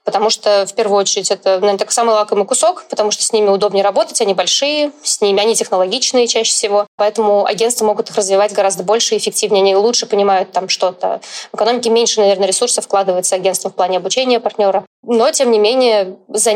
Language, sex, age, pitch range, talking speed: Russian, female, 20-39, 195-225 Hz, 200 wpm